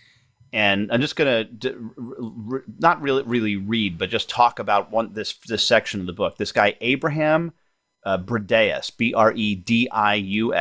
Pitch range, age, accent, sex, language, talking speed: 100-130 Hz, 30-49, American, male, English, 190 wpm